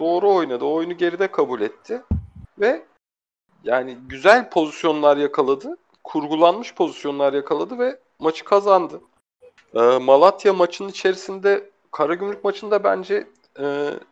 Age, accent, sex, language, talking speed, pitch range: 40-59, native, male, Turkish, 110 wpm, 130-195 Hz